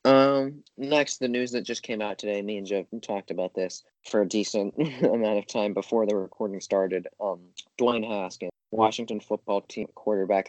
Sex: male